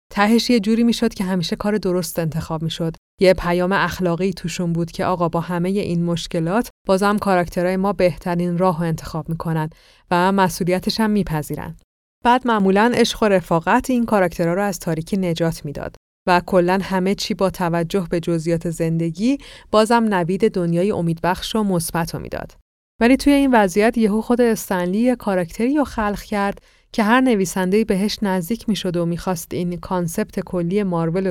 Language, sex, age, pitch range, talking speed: Persian, female, 30-49, 175-215 Hz, 165 wpm